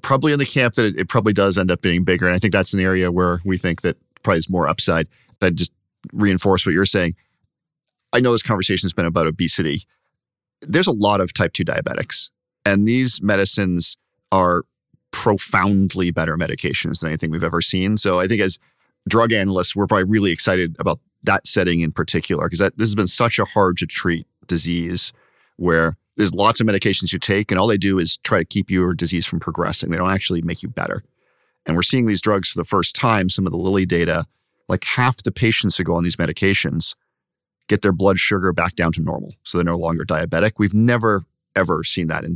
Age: 40-59